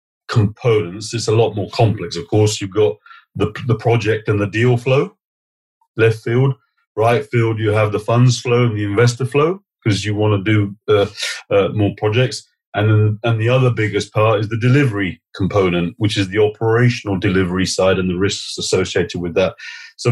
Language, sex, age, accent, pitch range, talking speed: English, male, 40-59, British, 100-125 Hz, 190 wpm